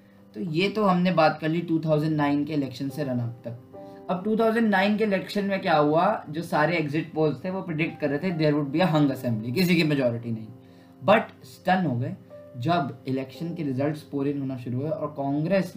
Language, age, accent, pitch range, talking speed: Hindi, 20-39, native, 130-170 Hz, 200 wpm